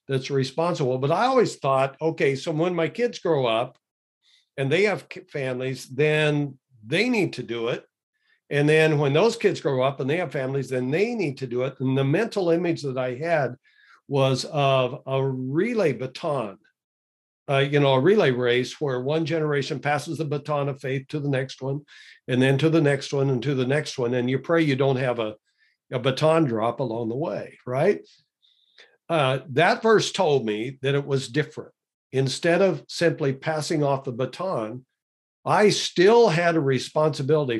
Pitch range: 130-160 Hz